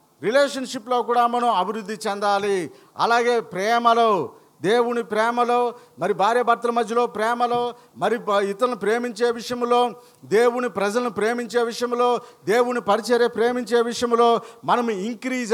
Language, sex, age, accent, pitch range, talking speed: Telugu, male, 50-69, native, 205-240 Hz, 110 wpm